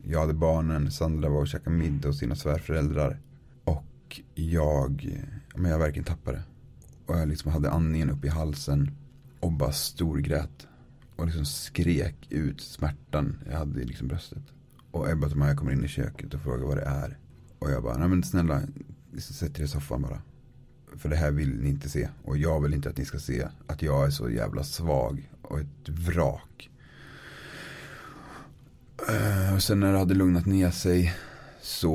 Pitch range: 75-95 Hz